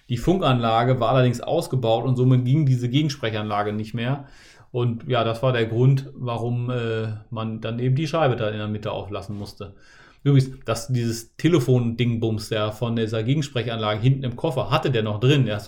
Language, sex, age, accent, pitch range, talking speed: German, male, 30-49, German, 115-135 Hz, 185 wpm